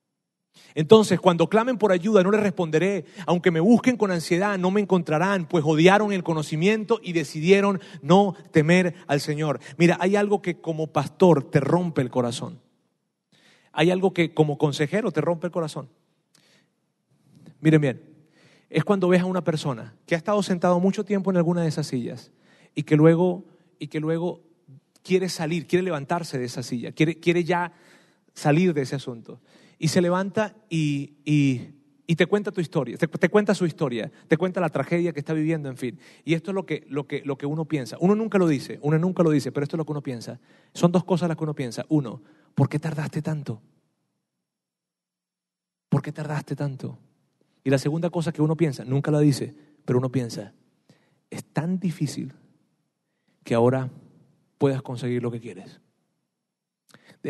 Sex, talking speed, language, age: male, 175 wpm, Spanish, 40-59